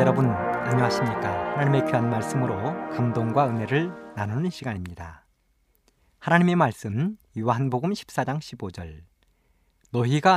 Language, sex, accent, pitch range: Korean, male, native, 100-155 Hz